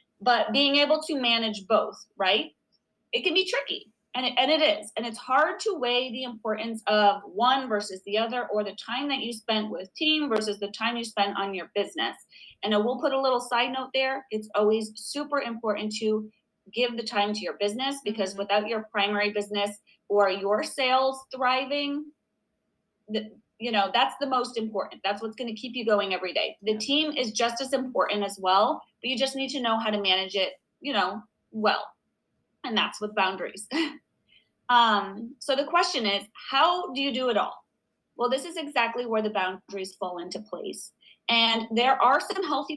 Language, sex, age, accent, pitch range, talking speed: English, female, 30-49, American, 210-270 Hz, 195 wpm